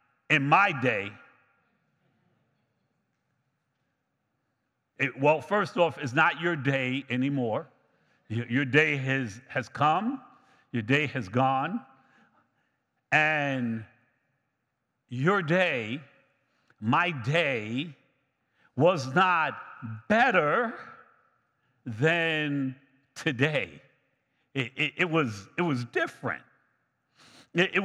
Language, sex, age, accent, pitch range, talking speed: English, male, 60-79, American, 130-180 Hz, 80 wpm